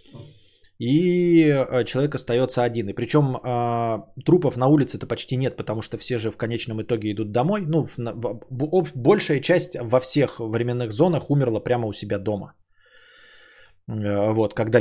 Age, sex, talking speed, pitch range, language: 20-39, male, 135 wpm, 110-135 Hz, Bulgarian